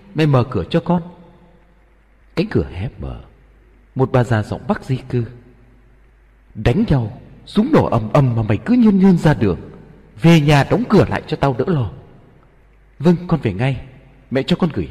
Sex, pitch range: male, 100-145 Hz